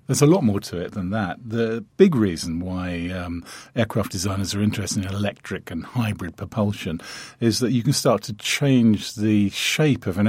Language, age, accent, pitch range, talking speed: English, 50-69, British, 95-115 Hz, 190 wpm